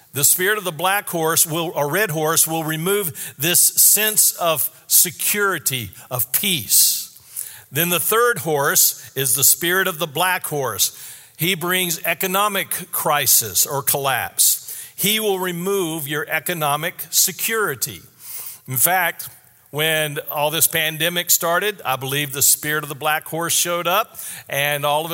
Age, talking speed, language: 50-69, 145 wpm, English